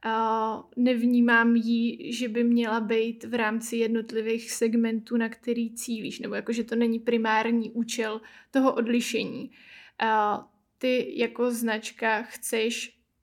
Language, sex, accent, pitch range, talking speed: Czech, female, native, 230-245 Hz, 120 wpm